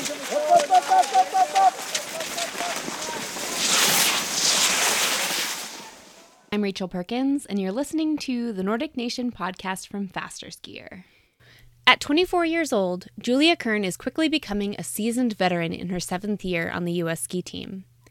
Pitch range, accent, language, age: 180-245 Hz, American, English, 20-39